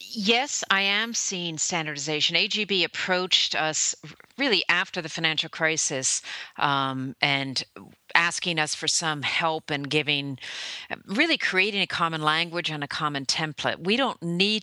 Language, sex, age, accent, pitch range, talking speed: English, female, 50-69, American, 140-185 Hz, 140 wpm